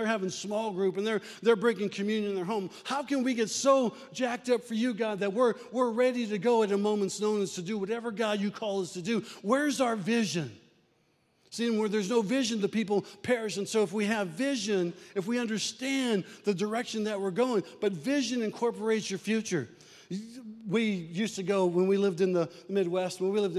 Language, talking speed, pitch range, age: English, 215 wpm, 160-210 Hz, 40-59